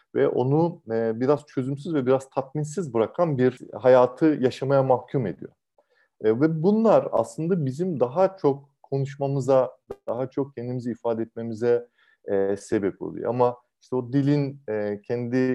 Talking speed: 125 wpm